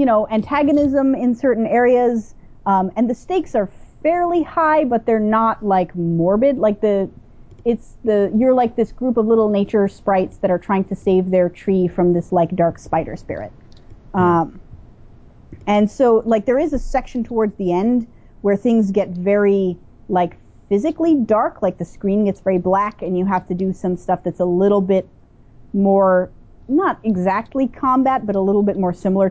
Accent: American